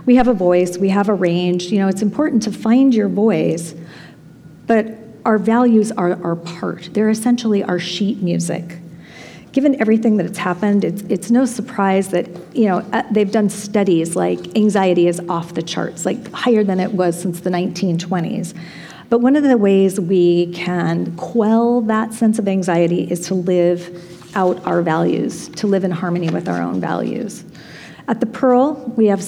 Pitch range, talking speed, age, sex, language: 175-220 Hz, 175 wpm, 40-59, female, English